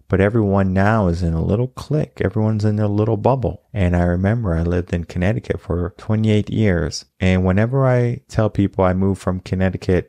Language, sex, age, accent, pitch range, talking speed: English, male, 30-49, American, 90-110 Hz, 190 wpm